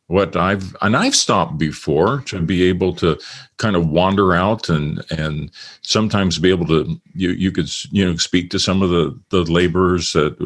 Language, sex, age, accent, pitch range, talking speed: English, male, 50-69, American, 85-110 Hz, 190 wpm